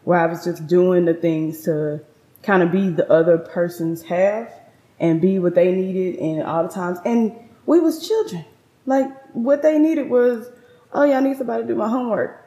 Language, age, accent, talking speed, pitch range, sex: English, 20-39, American, 200 wpm, 160-185 Hz, female